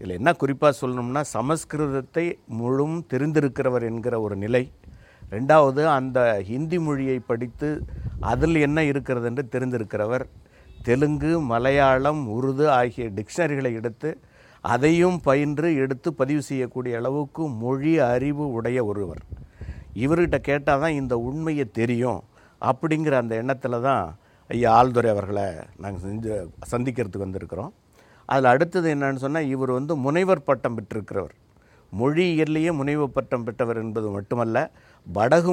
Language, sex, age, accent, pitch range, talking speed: English, male, 60-79, Indian, 120-155 Hz, 105 wpm